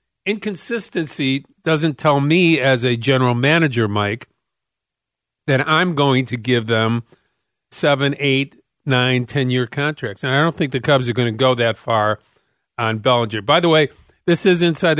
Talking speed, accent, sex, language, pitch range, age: 160 wpm, American, male, English, 125-145 Hz, 50-69